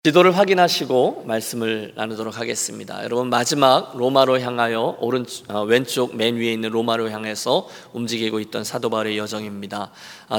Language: Korean